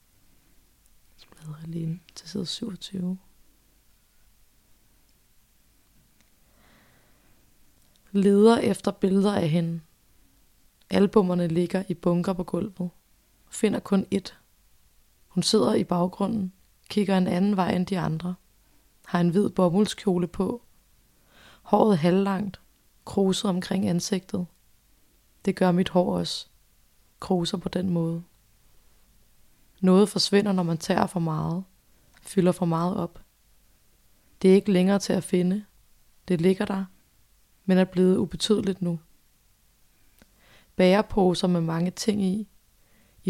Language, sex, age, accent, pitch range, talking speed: Danish, female, 30-49, native, 175-195 Hz, 105 wpm